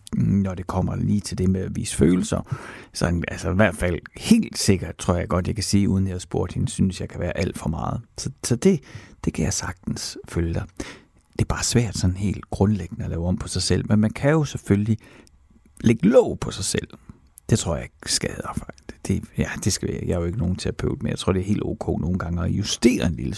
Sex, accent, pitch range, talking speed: male, native, 95-140 Hz, 250 wpm